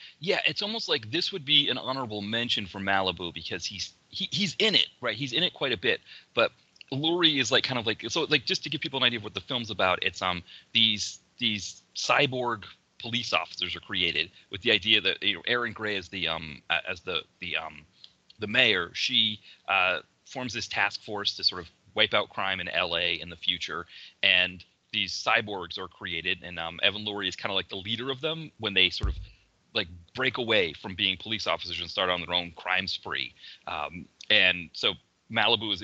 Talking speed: 215 wpm